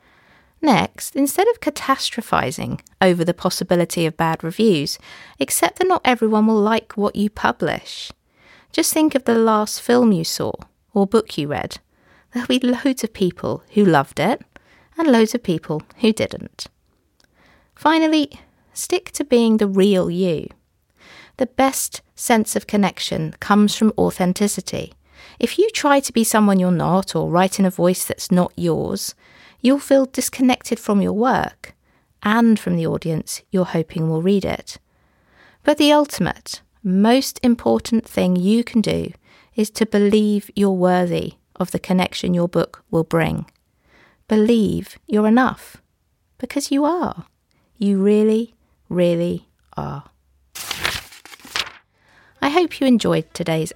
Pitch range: 180-245 Hz